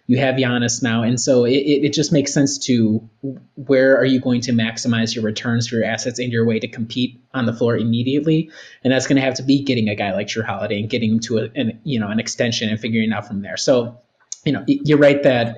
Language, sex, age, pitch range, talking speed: English, male, 30-49, 115-130 Hz, 255 wpm